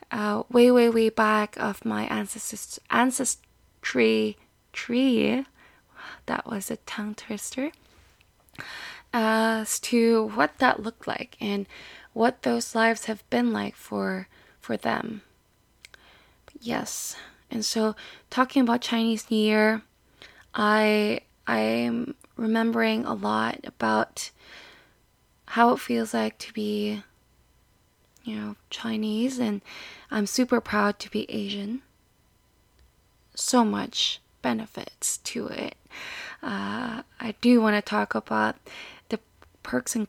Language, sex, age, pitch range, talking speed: English, female, 20-39, 205-235 Hz, 115 wpm